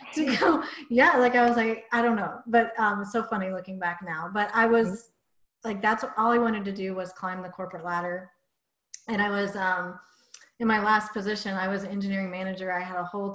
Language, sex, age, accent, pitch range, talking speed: English, female, 30-49, American, 185-225 Hz, 220 wpm